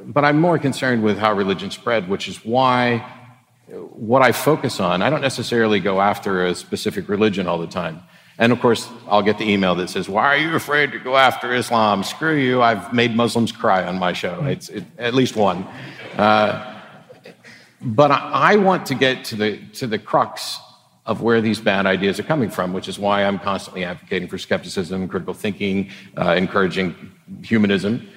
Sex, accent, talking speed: male, American, 190 wpm